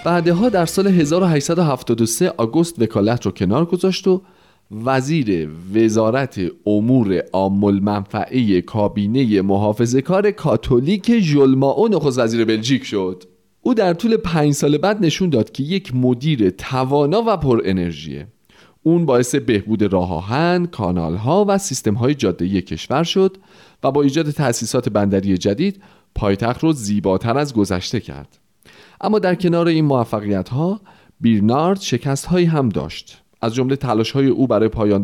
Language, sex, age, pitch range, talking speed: Persian, male, 40-59, 100-160 Hz, 125 wpm